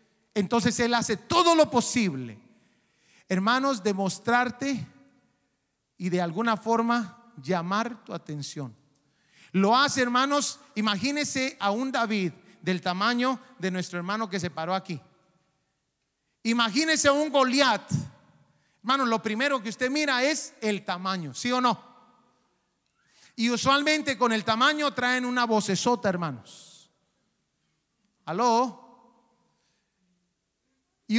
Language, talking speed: Spanish, 110 wpm